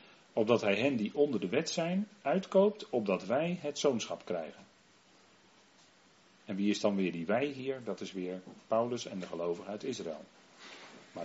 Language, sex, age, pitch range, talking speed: Dutch, male, 40-59, 95-130 Hz, 170 wpm